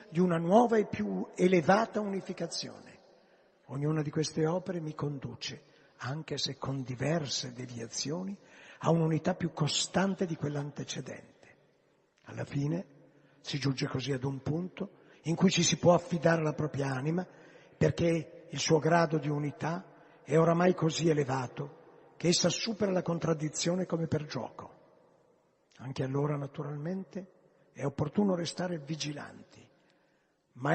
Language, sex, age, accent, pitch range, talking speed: Italian, male, 50-69, native, 145-180 Hz, 130 wpm